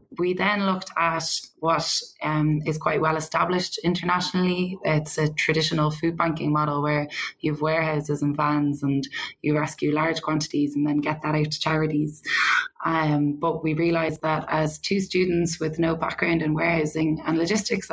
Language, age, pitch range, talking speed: English, 20-39, 155-170 Hz, 165 wpm